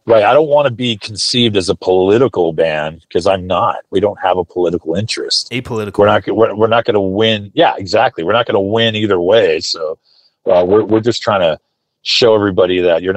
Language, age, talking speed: English, 40-59, 225 wpm